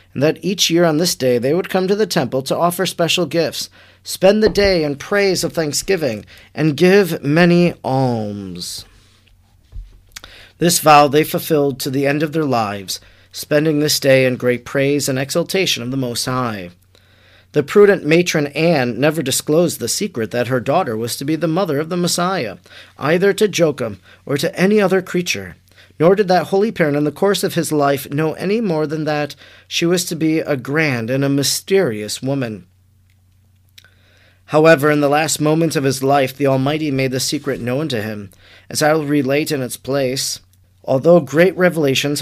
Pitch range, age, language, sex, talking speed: 120-170 Hz, 40-59, English, male, 180 wpm